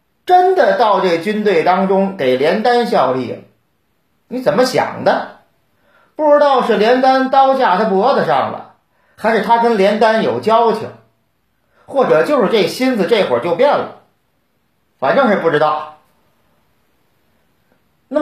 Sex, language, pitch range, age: male, Chinese, 215-280 Hz, 40-59